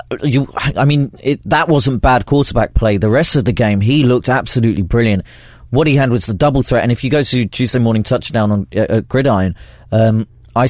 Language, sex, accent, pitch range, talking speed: English, male, British, 105-130 Hz, 220 wpm